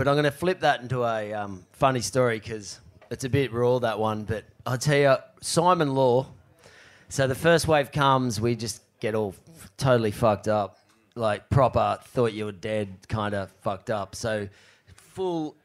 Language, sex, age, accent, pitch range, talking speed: English, male, 30-49, Australian, 120-195 Hz, 185 wpm